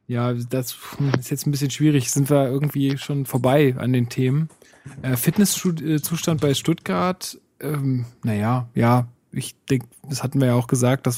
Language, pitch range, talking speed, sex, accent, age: German, 125-140 Hz, 165 wpm, male, German, 20-39